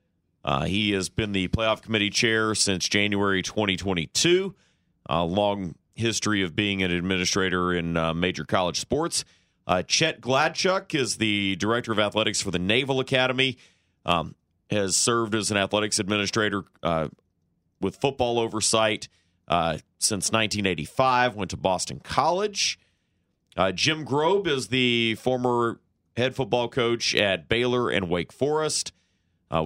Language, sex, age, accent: English, male, 30-49, American